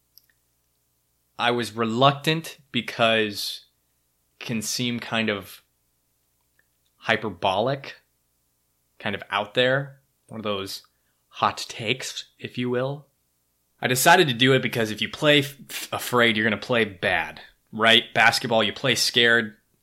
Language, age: English, 20-39